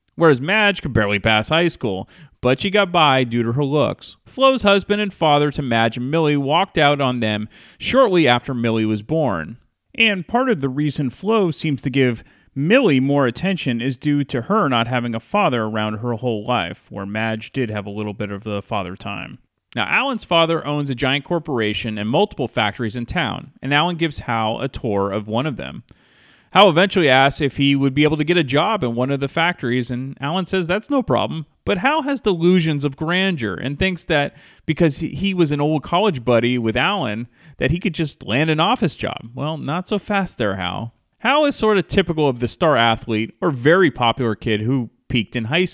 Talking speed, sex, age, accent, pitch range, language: 210 wpm, male, 30-49, American, 120-175 Hz, English